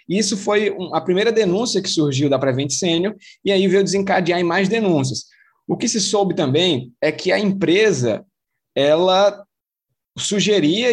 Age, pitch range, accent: 20-39, 145-205 Hz, Brazilian